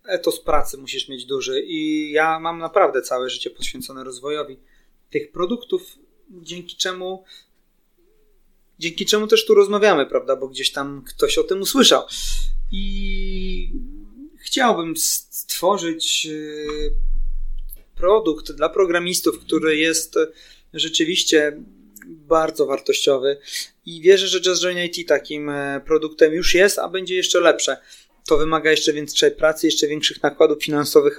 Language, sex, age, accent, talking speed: Polish, male, 30-49, native, 125 wpm